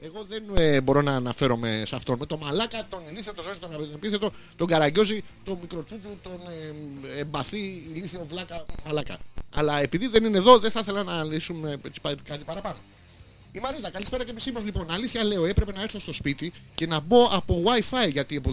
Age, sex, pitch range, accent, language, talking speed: 30-49, male, 150-210 Hz, native, Greek, 205 wpm